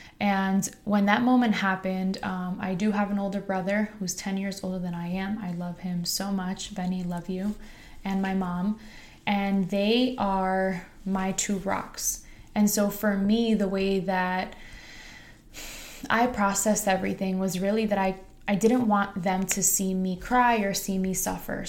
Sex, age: female, 20-39